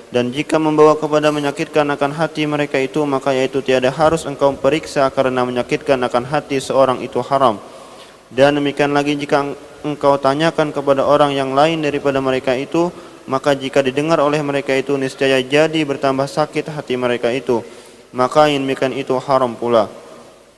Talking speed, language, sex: 155 wpm, Malay, male